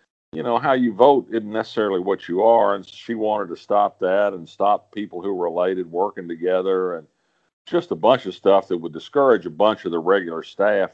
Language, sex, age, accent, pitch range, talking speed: English, male, 50-69, American, 85-105 Hz, 215 wpm